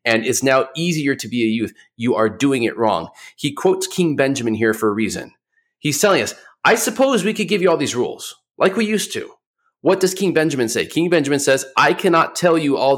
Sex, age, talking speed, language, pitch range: male, 30-49, 230 wpm, English, 120-165 Hz